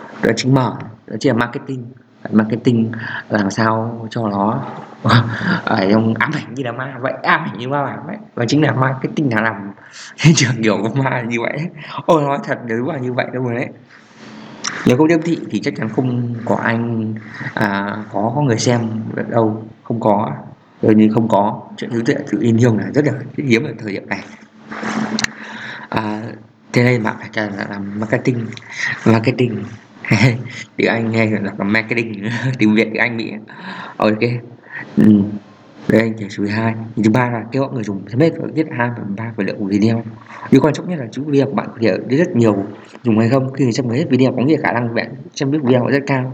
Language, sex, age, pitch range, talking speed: Vietnamese, male, 20-39, 110-130 Hz, 205 wpm